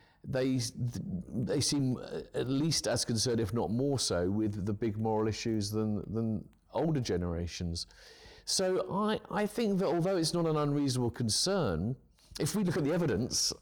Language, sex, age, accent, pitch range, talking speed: English, male, 50-69, British, 100-125 Hz, 165 wpm